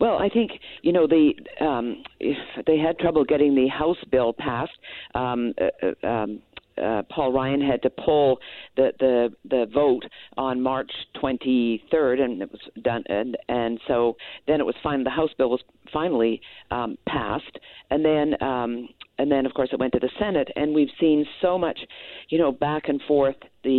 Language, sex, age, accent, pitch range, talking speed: English, female, 50-69, American, 125-150 Hz, 185 wpm